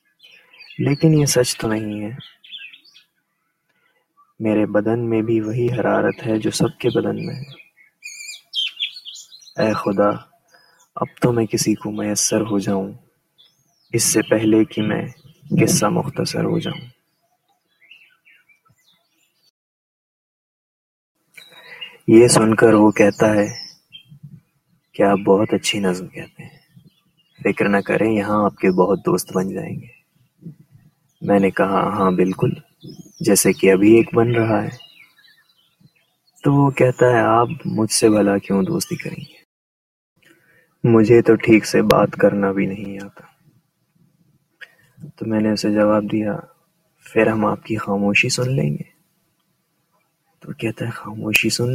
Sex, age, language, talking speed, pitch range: male, 20-39, Urdu, 135 wpm, 110-165 Hz